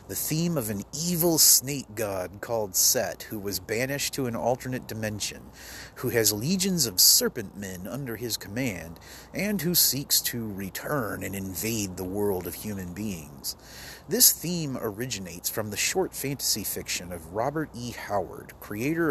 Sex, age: male, 30-49